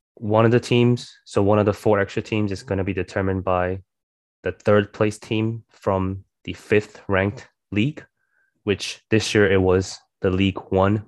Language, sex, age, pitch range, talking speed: English, male, 20-39, 95-115 Hz, 180 wpm